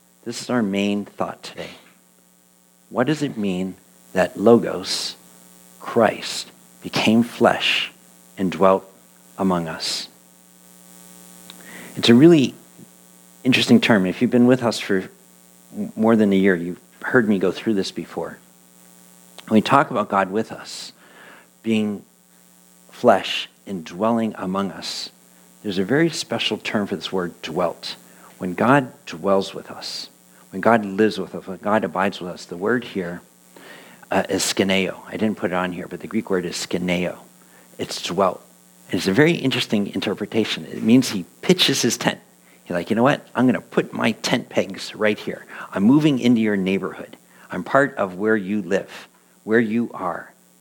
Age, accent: 50-69, American